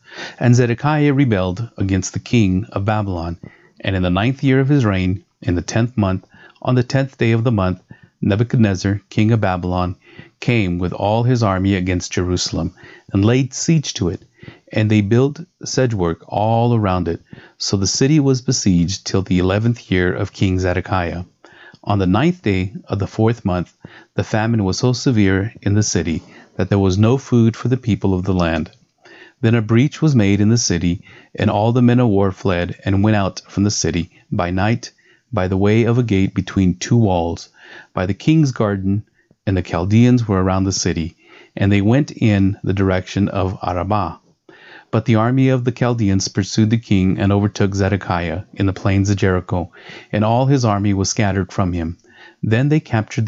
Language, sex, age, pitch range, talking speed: English, male, 30-49, 95-115 Hz, 190 wpm